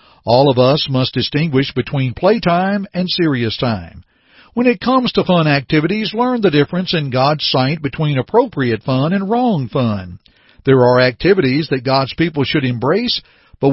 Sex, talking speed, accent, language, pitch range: male, 160 wpm, American, English, 125-180 Hz